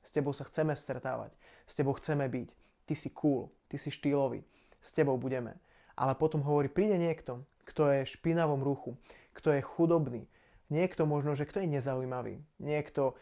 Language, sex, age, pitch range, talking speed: Slovak, male, 20-39, 130-150 Hz, 170 wpm